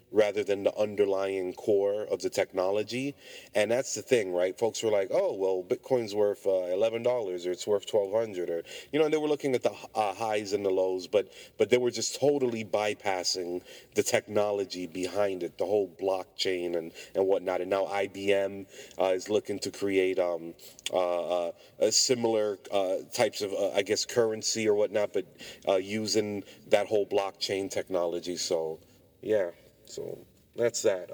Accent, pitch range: American, 95-130 Hz